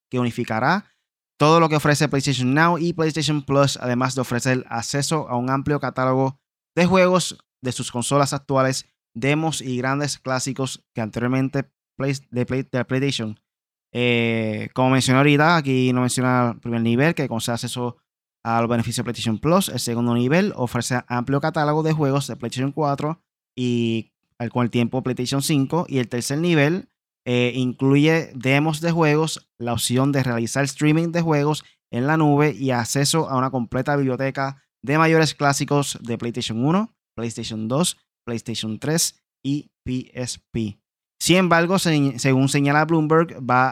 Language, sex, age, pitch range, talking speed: Spanish, male, 20-39, 120-145 Hz, 155 wpm